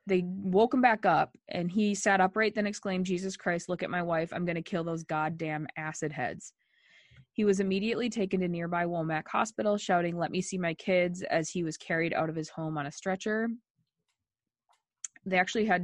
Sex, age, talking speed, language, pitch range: female, 20-39, 200 wpm, English, 170-210 Hz